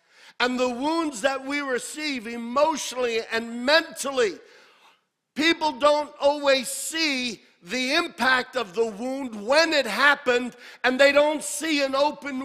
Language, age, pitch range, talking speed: English, 50-69, 235-290 Hz, 130 wpm